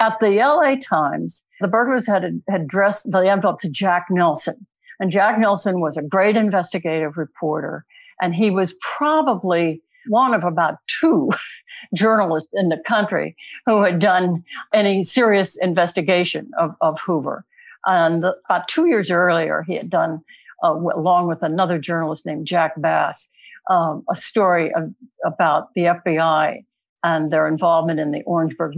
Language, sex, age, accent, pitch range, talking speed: English, female, 60-79, American, 170-220 Hz, 150 wpm